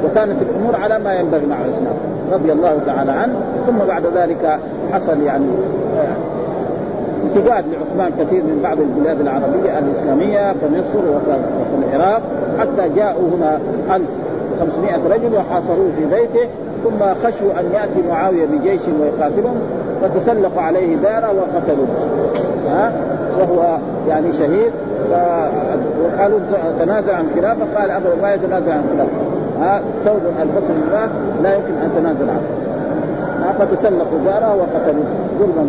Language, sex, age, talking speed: Arabic, male, 50-69, 125 wpm